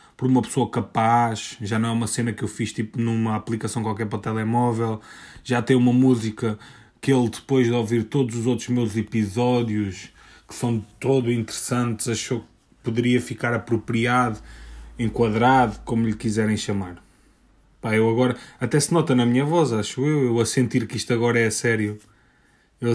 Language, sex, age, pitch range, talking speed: Portuguese, male, 20-39, 110-130 Hz, 170 wpm